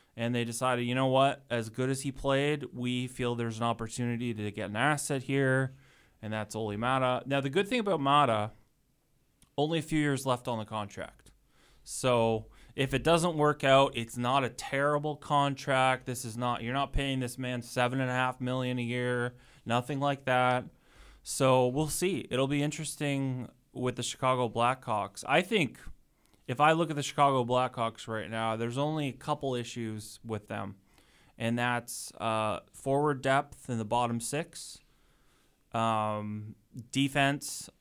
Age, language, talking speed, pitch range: 20-39, English, 170 wpm, 115-140 Hz